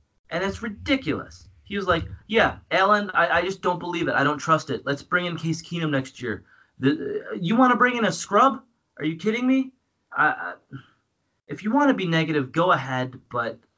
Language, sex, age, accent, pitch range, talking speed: English, male, 30-49, American, 125-170 Hz, 210 wpm